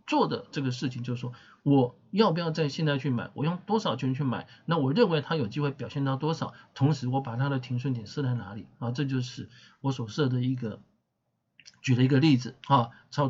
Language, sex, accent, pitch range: Chinese, male, native, 125-160 Hz